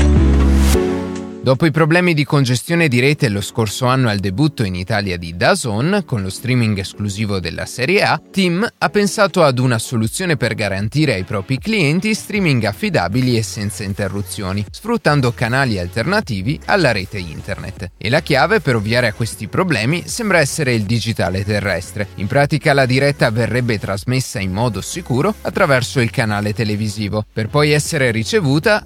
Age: 30-49